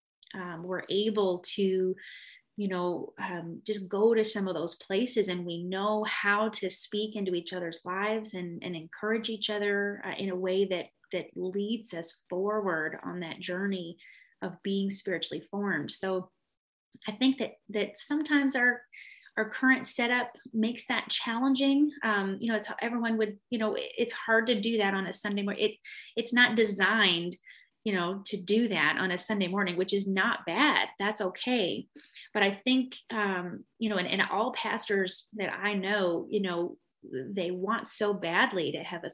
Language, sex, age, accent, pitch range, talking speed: English, female, 30-49, American, 185-225 Hz, 180 wpm